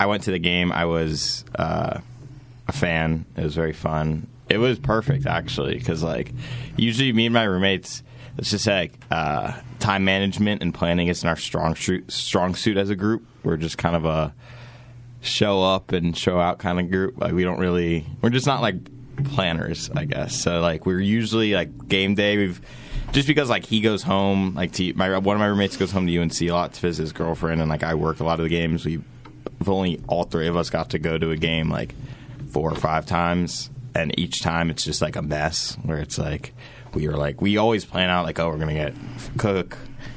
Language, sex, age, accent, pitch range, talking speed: English, male, 20-39, American, 80-120 Hz, 220 wpm